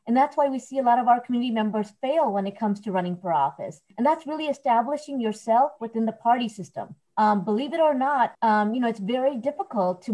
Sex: female